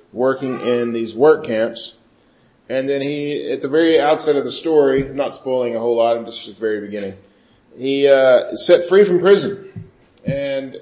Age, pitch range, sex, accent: 40-59, 120-155 Hz, male, American